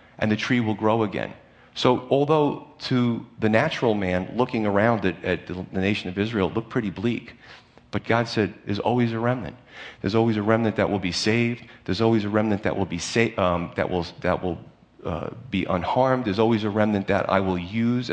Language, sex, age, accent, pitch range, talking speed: English, male, 40-59, American, 100-130 Hz, 210 wpm